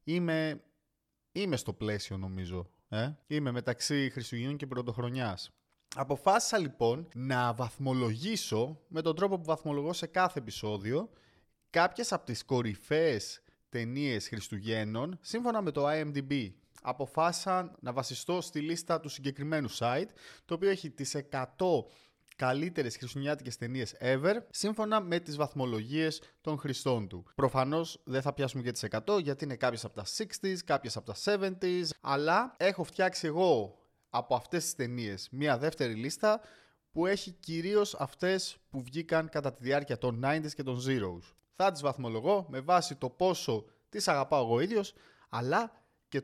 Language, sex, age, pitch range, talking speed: Greek, male, 20-39, 120-170 Hz, 145 wpm